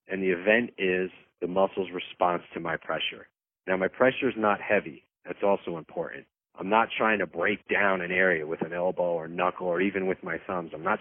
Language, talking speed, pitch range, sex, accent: English, 215 wpm, 90-110 Hz, male, American